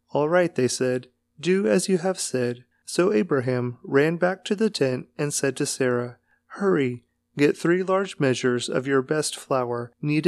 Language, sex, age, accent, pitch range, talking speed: English, male, 30-49, American, 125-165 Hz, 175 wpm